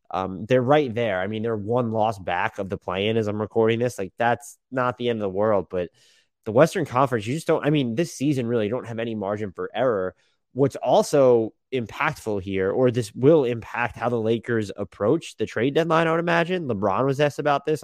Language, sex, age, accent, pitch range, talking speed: English, male, 20-39, American, 110-140 Hz, 220 wpm